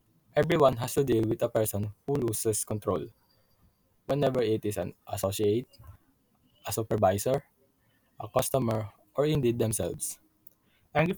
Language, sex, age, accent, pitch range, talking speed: English, male, 20-39, Filipino, 105-130 Hz, 125 wpm